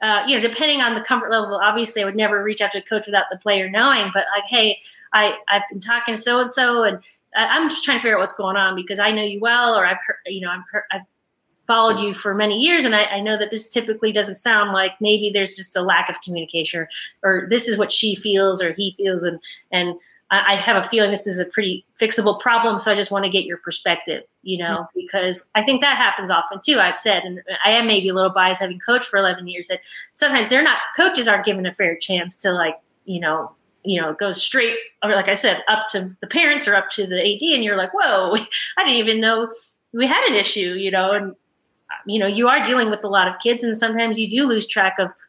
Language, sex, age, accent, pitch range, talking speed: English, female, 30-49, American, 195-240 Hz, 255 wpm